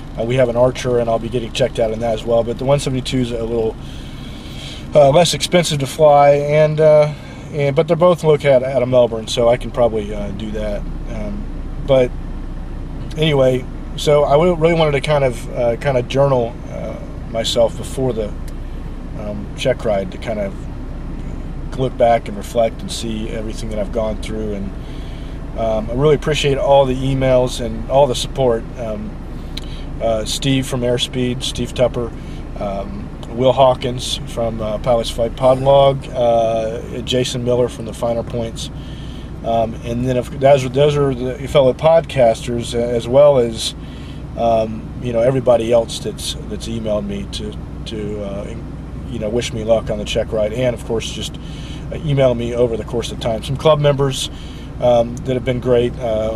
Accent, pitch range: American, 115-135 Hz